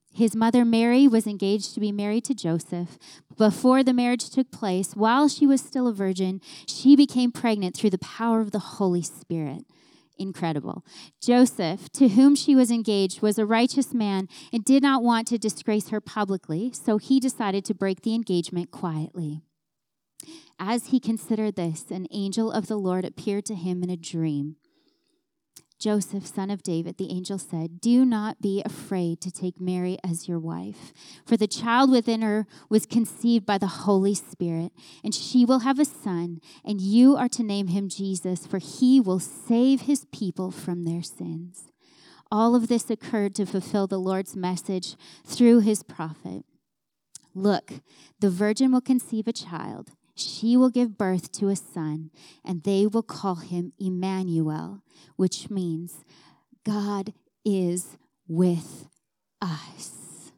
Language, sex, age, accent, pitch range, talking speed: English, female, 30-49, American, 180-230 Hz, 160 wpm